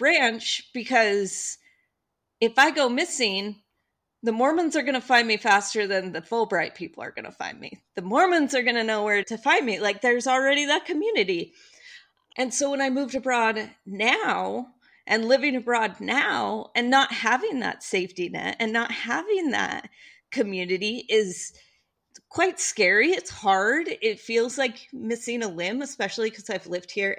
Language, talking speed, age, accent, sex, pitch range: English, 170 wpm, 30-49, American, female, 200-270 Hz